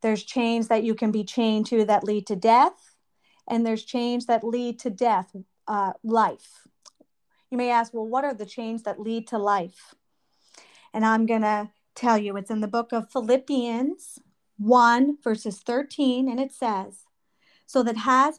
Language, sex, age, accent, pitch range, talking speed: English, female, 40-59, American, 205-245 Hz, 175 wpm